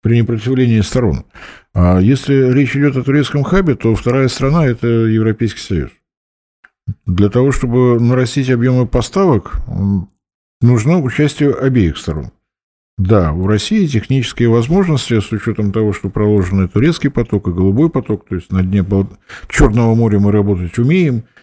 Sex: male